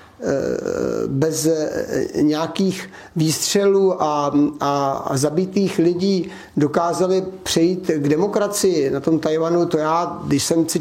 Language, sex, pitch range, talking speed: Czech, male, 150-170 Hz, 110 wpm